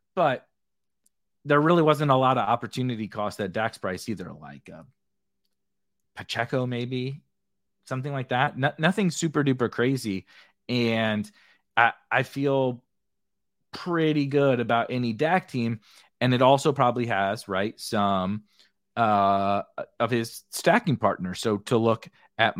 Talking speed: 135 wpm